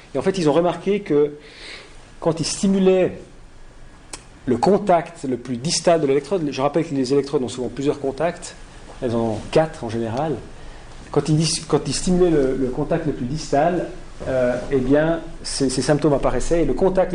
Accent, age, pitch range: French, 40-59, 125-160 Hz